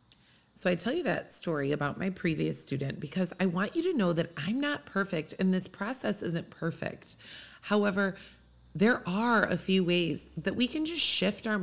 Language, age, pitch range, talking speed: English, 30-49, 150-210 Hz, 190 wpm